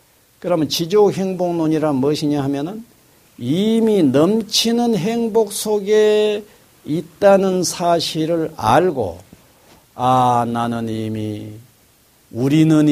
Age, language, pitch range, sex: 60-79, Korean, 120-200 Hz, male